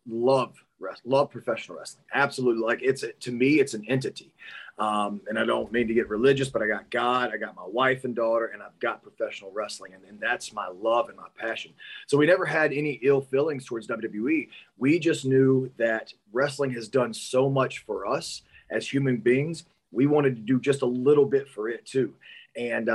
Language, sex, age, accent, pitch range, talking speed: English, male, 30-49, American, 125-150 Hz, 205 wpm